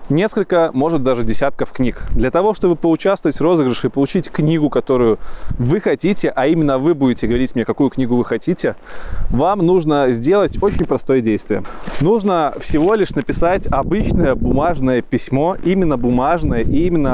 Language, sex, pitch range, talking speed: Russian, male, 130-180 Hz, 150 wpm